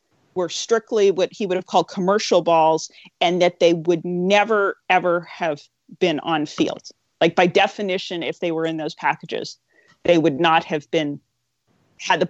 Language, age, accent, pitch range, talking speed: English, 40-59, American, 170-210 Hz, 170 wpm